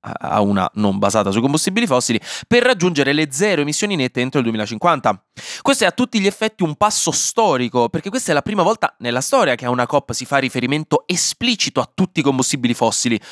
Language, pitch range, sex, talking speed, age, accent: Italian, 110-145 Hz, male, 205 wpm, 20-39, native